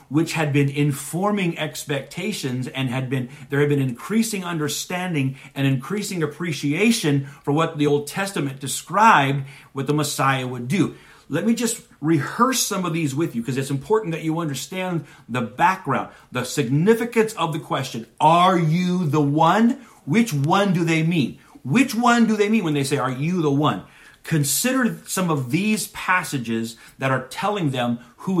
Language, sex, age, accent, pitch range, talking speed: English, male, 40-59, American, 125-170 Hz, 170 wpm